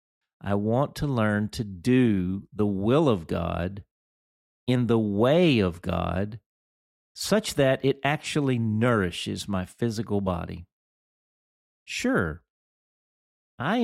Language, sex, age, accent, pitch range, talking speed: English, male, 50-69, American, 95-130 Hz, 110 wpm